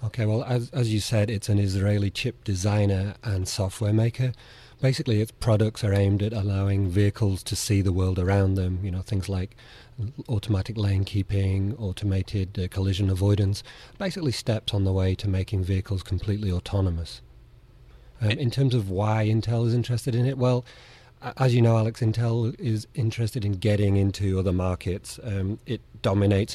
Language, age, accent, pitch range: English, 30-49, British, 100-115 Hz